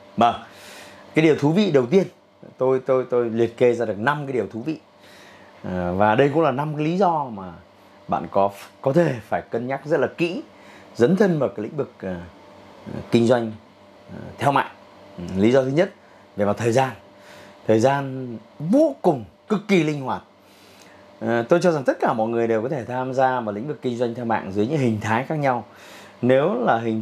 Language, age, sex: Vietnamese, 30-49, male